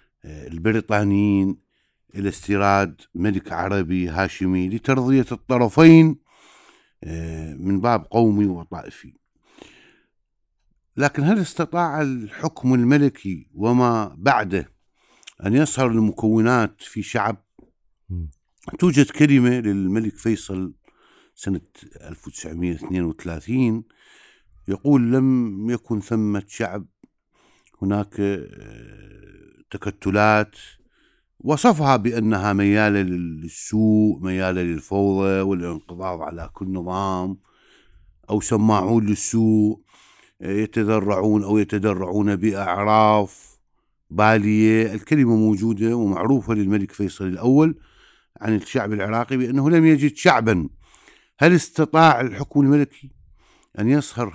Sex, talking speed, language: male, 80 wpm, Arabic